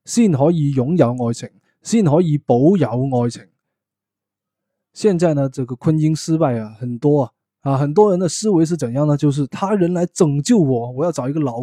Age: 20-39